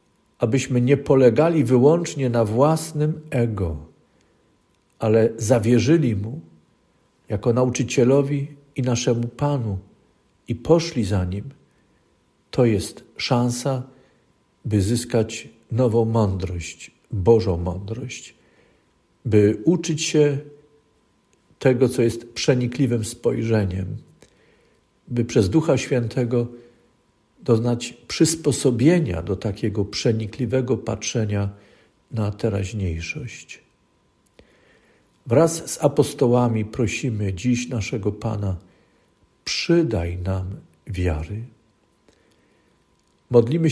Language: Polish